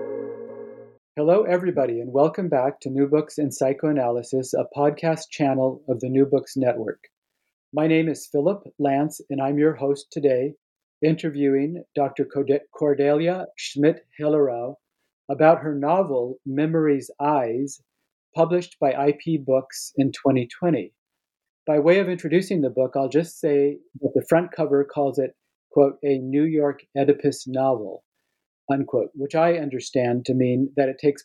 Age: 50-69